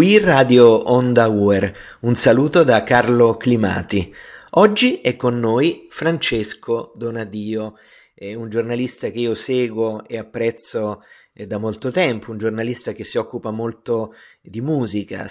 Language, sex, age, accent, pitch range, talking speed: Italian, male, 30-49, native, 105-125 Hz, 135 wpm